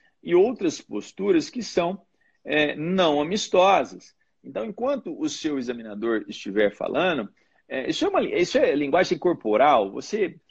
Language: Portuguese